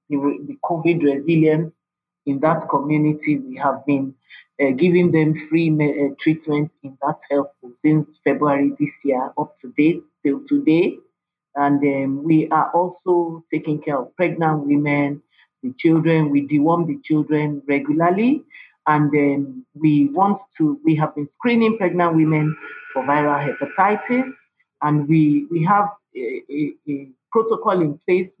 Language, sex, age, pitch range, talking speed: English, male, 50-69, 145-180 Hz, 140 wpm